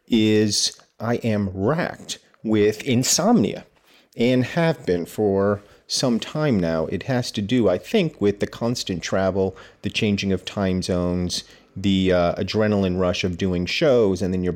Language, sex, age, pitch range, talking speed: English, male, 40-59, 95-120 Hz, 155 wpm